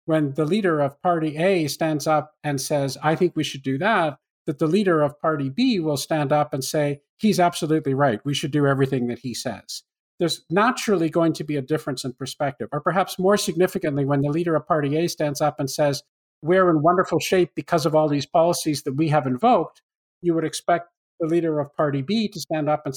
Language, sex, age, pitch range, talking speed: English, male, 50-69, 145-180 Hz, 220 wpm